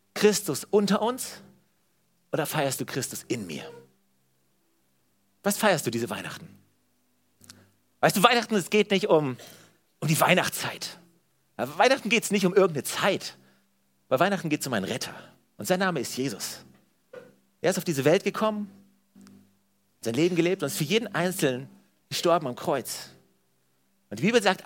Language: German